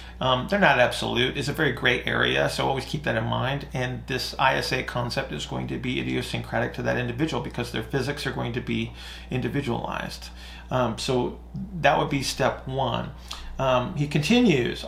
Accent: American